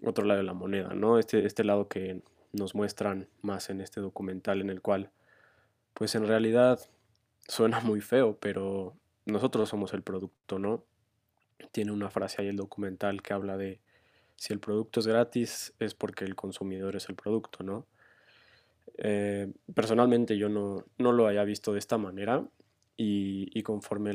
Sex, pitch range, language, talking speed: male, 100-110 Hz, Spanish, 165 wpm